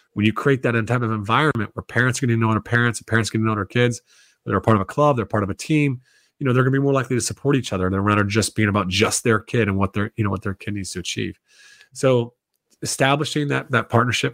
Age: 30-49